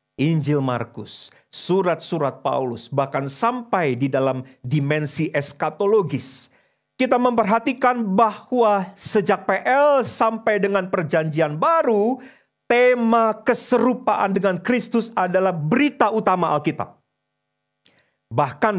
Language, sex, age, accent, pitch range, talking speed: English, male, 40-59, Indonesian, 125-195 Hz, 90 wpm